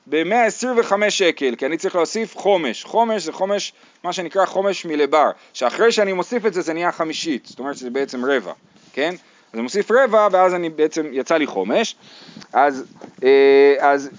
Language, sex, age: Hebrew, male, 30-49